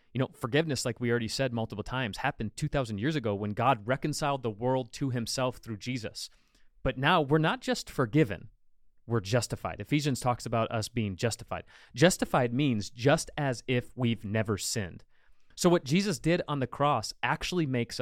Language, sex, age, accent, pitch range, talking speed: English, male, 30-49, American, 105-130 Hz, 175 wpm